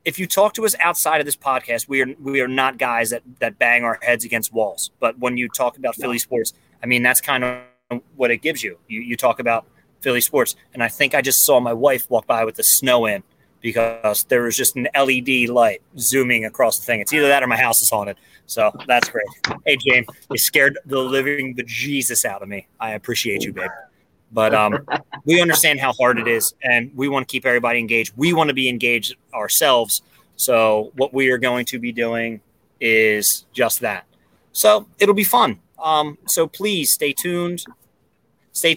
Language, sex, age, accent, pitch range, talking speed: English, male, 30-49, American, 120-155 Hz, 210 wpm